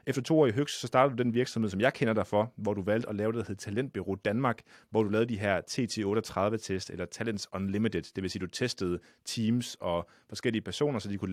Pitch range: 100-120 Hz